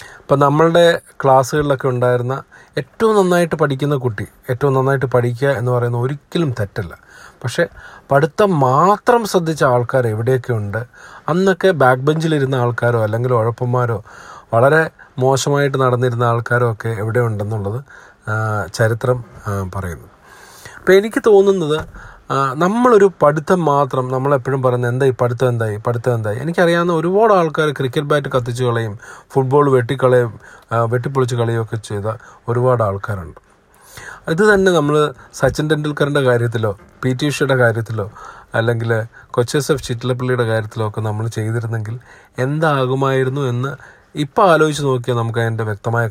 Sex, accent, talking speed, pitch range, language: male, native, 115 wpm, 115-150 Hz, Malayalam